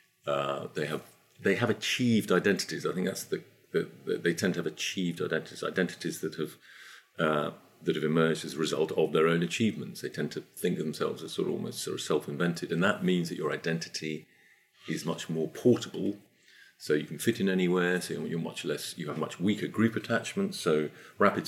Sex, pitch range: male, 80-95 Hz